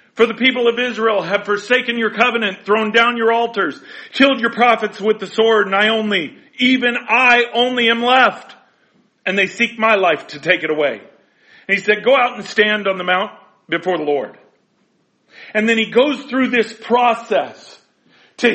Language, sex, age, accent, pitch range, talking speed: English, male, 40-59, American, 170-225 Hz, 185 wpm